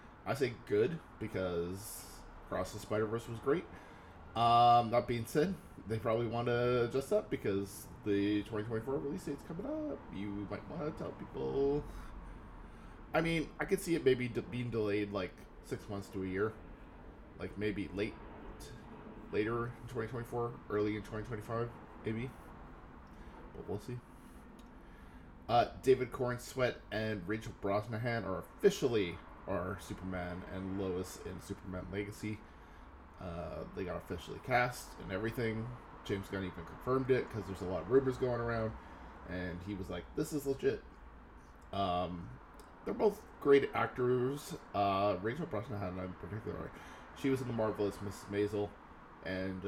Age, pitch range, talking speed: 20-39, 95-125 Hz, 145 wpm